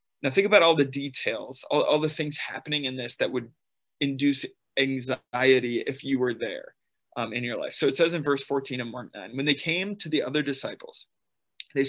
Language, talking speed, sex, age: English, 210 wpm, male, 20-39